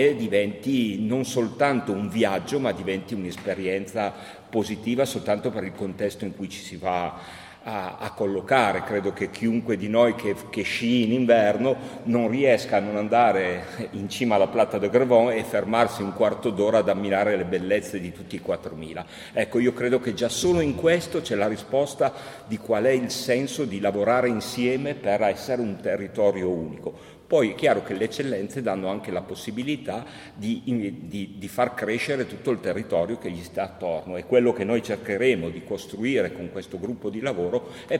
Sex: male